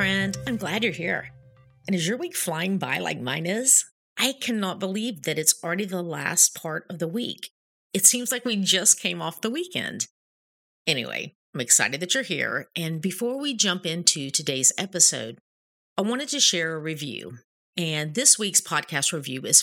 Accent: American